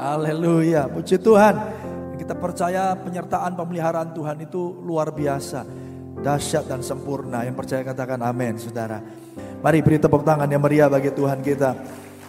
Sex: male